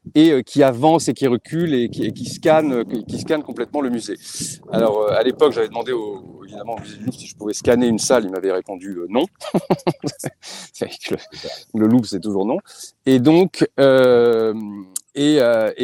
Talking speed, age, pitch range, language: 180 wpm, 40-59, 115-160 Hz, English